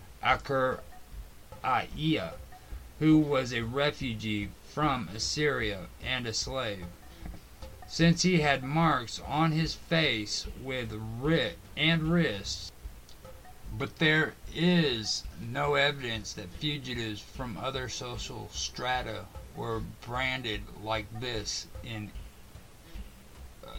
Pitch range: 105-145 Hz